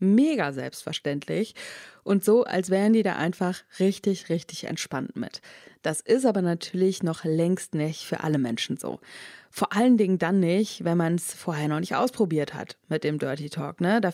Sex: female